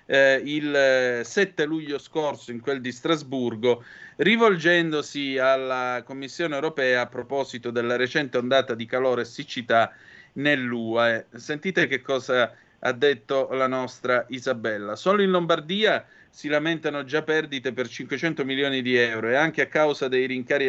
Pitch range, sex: 125-160 Hz, male